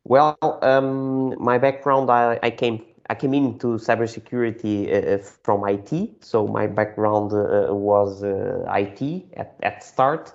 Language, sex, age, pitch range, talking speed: English, male, 20-39, 100-120 Hz, 130 wpm